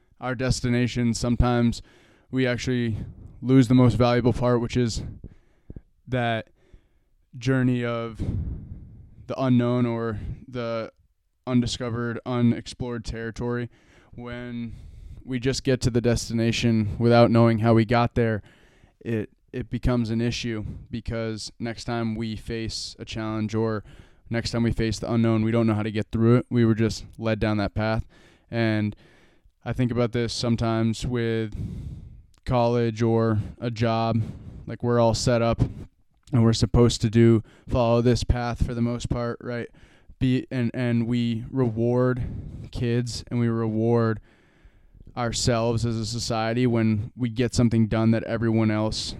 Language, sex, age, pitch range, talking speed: English, male, 20-39, 110-120 Hz, 145 wpm